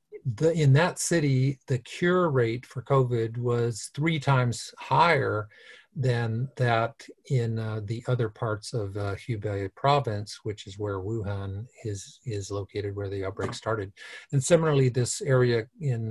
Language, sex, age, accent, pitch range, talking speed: English, male, 50-69, American, 110-135 Hz, 150 wpm